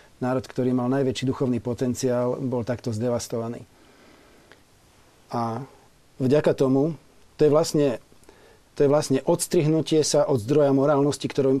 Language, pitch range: Slovak, 125-140 Hz